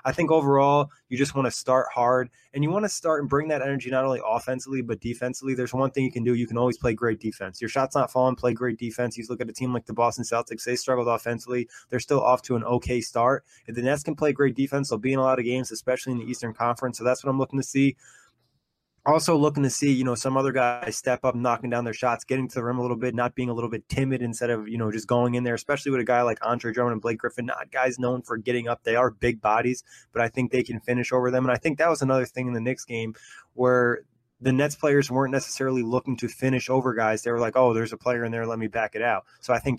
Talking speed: 285 wpm